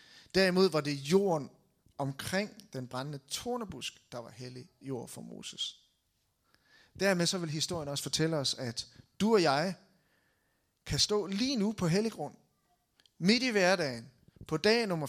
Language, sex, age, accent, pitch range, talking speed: Danish, male, 30-49, native, 145-200 Hz, 150 wpm